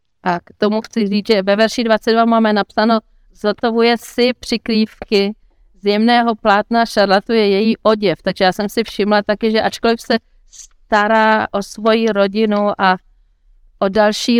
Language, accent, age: Czech, native, 40-59